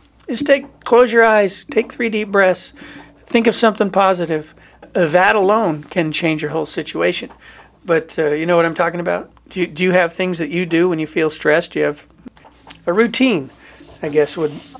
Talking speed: 205 wpm